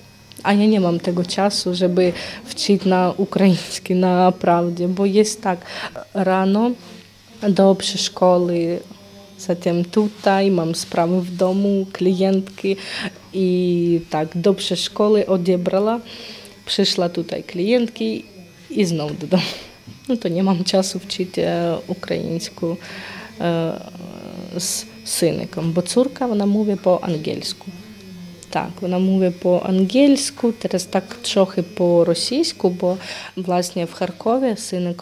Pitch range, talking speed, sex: 175-205 Hz, 110 wpm, female